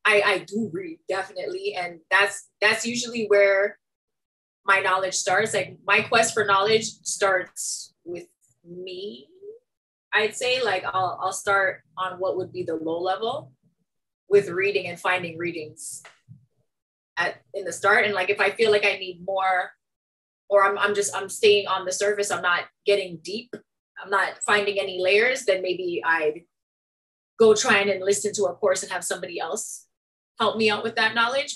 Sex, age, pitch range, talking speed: female, 20-39, 180-210 Hz, 170 wpm